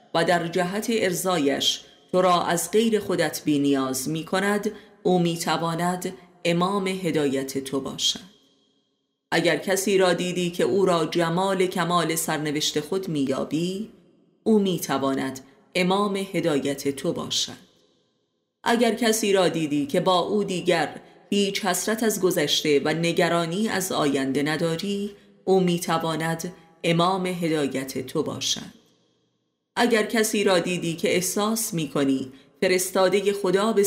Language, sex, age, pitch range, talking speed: Persian, female, 30-49, 155-195 Hz, 135 wpm